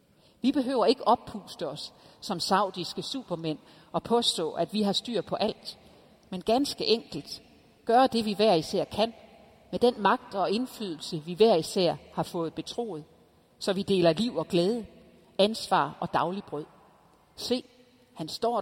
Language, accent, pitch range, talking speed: Danish, native, 165-205 Hz, 155 wpm